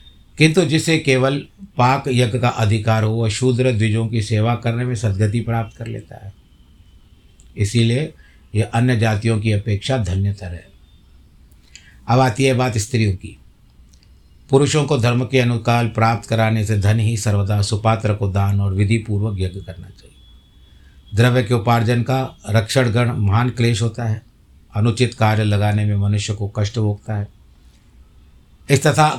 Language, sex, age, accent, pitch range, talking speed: Hindi, male, 50-69, native, 95-125 Hz, 150 wpm